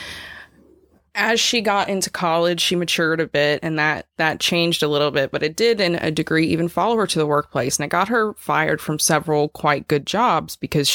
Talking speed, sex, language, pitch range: 215 wpm, female, English, 150-195 Hz